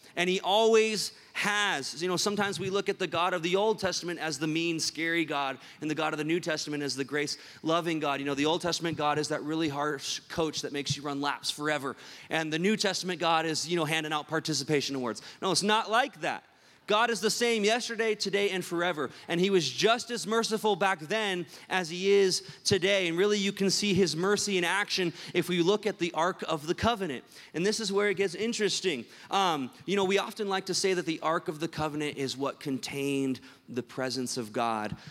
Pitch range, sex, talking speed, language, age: 150-195 Hz, male, 225 wpm, English, 30-49